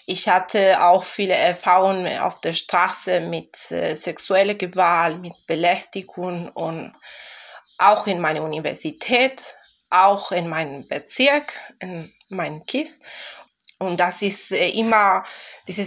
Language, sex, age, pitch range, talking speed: German, female, 20-39, 185-225 Hz, 120 wpm